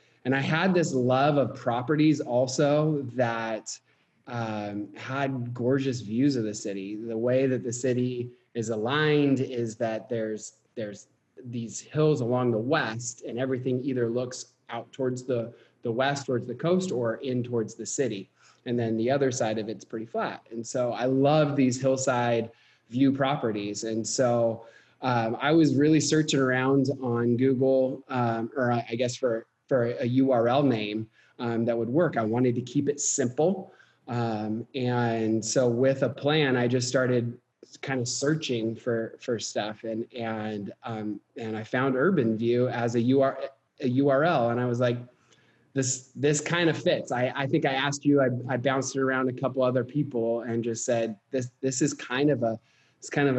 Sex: male